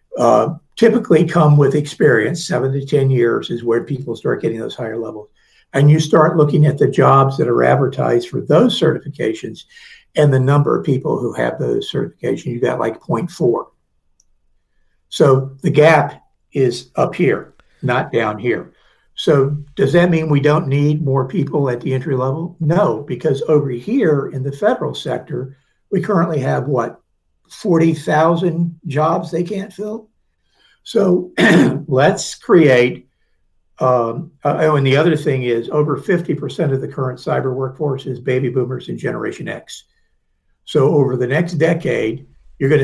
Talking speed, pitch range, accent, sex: 160 wpm, 135-165 Hz, American, male